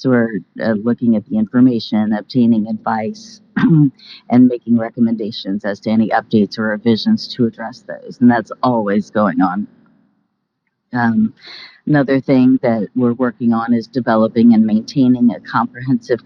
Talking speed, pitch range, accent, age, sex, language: 145 wpm, 110-145 Hz, American, 40-59, female, English